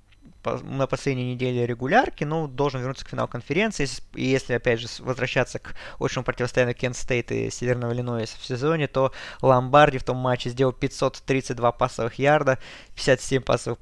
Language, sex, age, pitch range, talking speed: Russian, male, 20-39, 120-145 Hz, 155 wpm